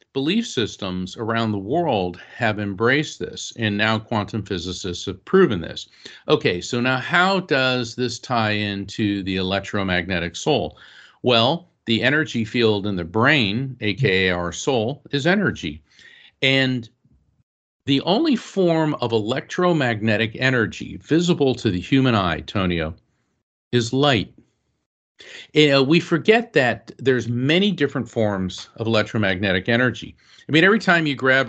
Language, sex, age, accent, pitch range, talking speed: English, male, 50-69, American, 100-130 Hz, 130 wpm